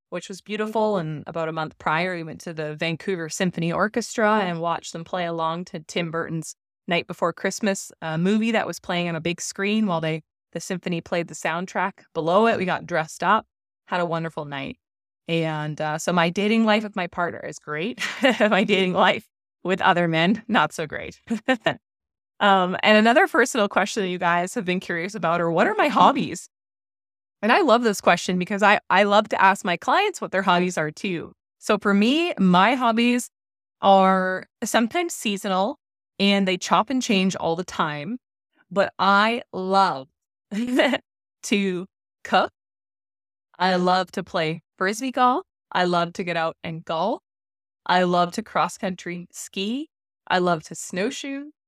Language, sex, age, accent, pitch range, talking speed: English, female, 20-39, American, 165-215 Hz, 175 wpm